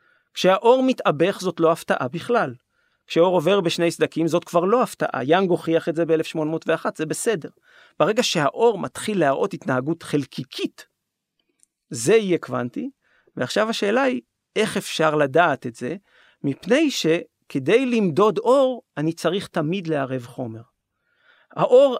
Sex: male